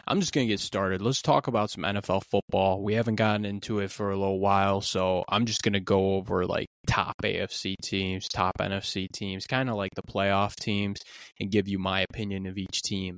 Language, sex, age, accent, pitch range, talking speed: English, male, 20-39, American, 100-115 Hz, 225 wpm